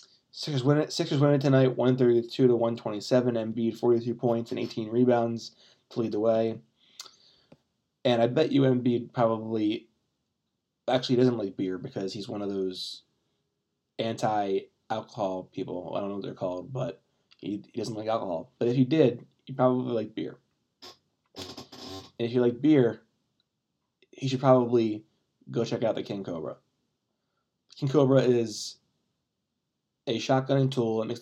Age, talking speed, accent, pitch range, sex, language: 20-39, 150 wpm, American, 110-130 Hz, male, English